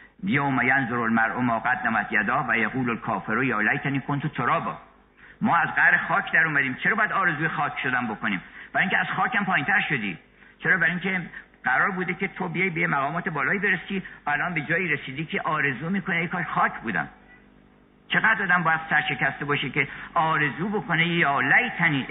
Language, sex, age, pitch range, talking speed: Persian, male, 50-69, 135-180 Hz, 165 wpm